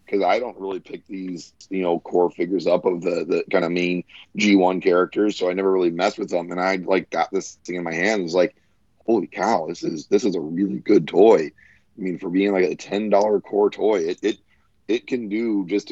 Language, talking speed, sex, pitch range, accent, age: English, 240 wpm, male, 85-110 Hz, American, 30-49